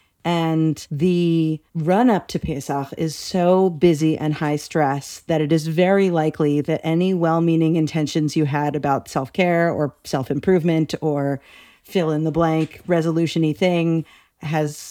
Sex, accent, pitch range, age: female, American, 150-175 Hz, 40-59